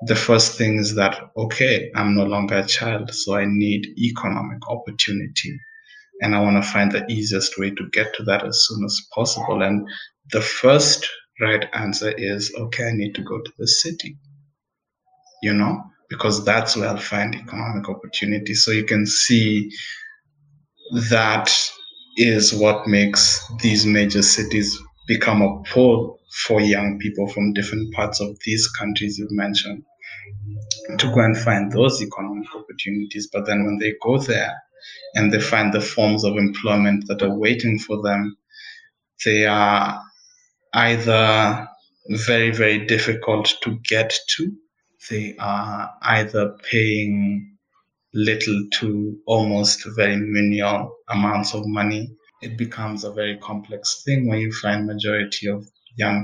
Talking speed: 145 wpm